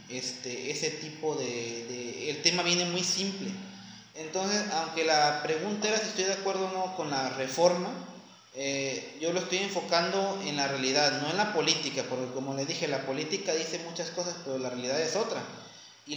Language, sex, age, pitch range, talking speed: Spanish, male, 30-49, 140-175 Hz, 190 wpm